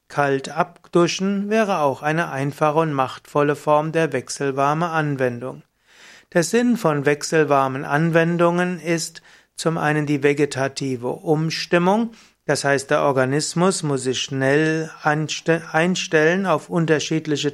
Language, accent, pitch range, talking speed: German, German, 140-165 Hz, 115 wpm